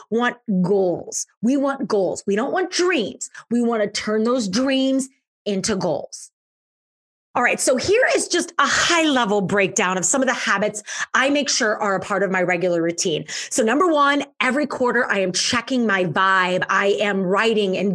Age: 30-49